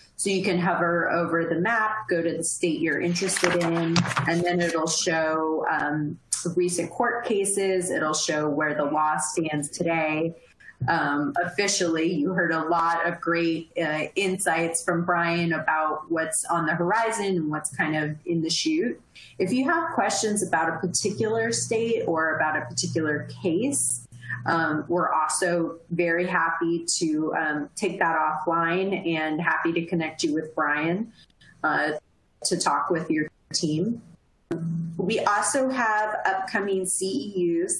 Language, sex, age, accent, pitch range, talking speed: English, female, 30-49, American, 160-185 Hz, 150 wpm